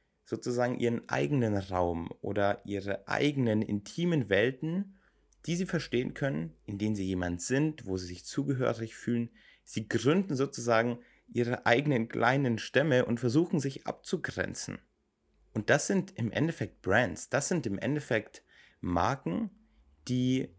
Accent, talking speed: German, 135 wpm